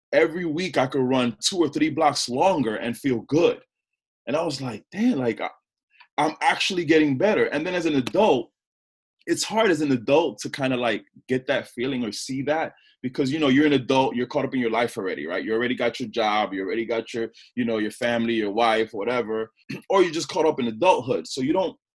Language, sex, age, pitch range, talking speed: English, male, 20-39, 110-145 Hz, 225 wpm